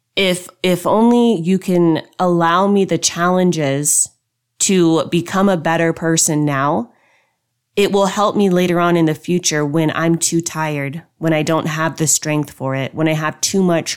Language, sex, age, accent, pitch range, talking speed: English, female, 20-39, American, 155-185 Hz, 175 wpm